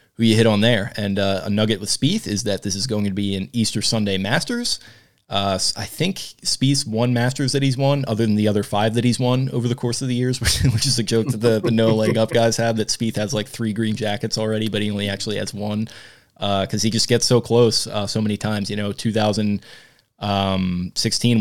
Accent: American